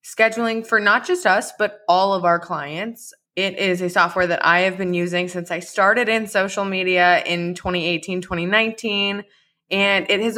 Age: 20-39